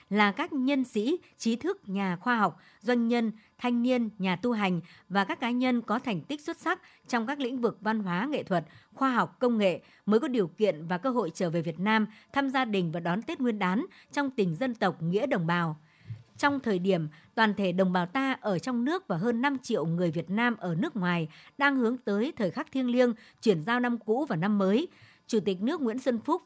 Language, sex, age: Vietnamese, male, 60-79